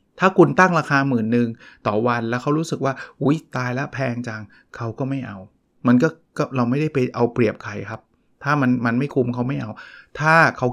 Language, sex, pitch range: Thai, male, 120-170 Hz